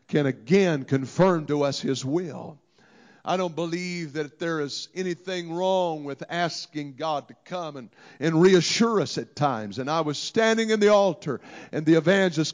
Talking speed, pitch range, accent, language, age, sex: 170 wpm, 160-195 Hz, American, English, 50-69, male